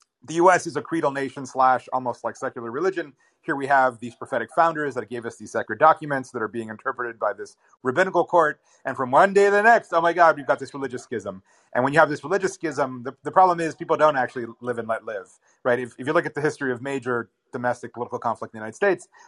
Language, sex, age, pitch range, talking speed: English, male, 30-49, 120-160 Hz, 250 wpm